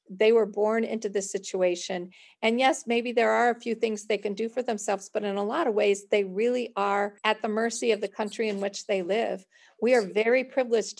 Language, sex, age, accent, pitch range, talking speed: English, female, 50-69, American, 200-235 Hz, 230 wpm